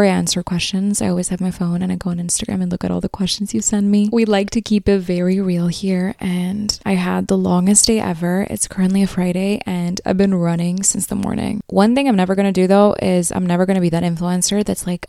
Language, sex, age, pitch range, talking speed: English, female, 20-39, 175-200 Hz, 255 wpm